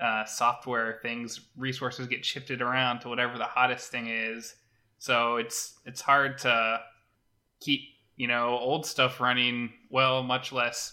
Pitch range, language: 115-135 Hz, English